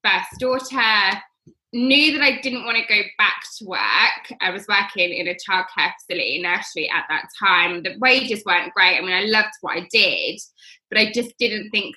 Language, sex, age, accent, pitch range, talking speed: English, female, 20-39, British, 185-230 Hz, 195 wpm